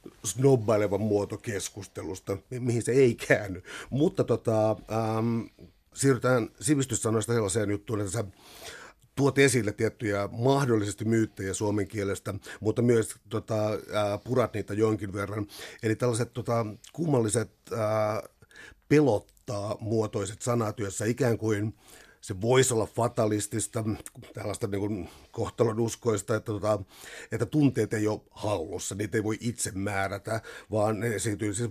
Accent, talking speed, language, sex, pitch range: native, 120 wpm, Finnish, male, 100-115 Hz